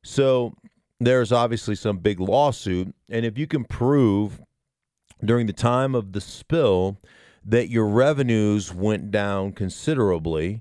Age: 40-59